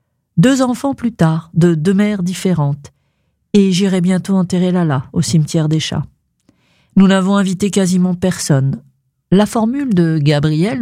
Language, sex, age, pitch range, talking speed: French, female, 50-69, 150-190 Hz, 145 wpm